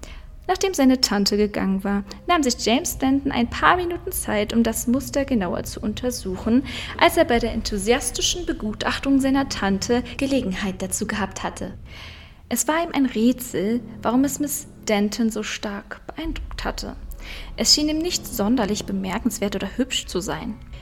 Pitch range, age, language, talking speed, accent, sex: 205-275 Hz, 20-39, German, 155 wpm, German, female